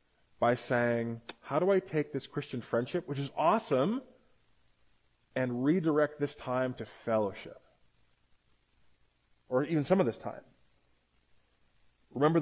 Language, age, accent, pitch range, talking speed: English, 20-39, American, 110-145 Hz, 120 wpm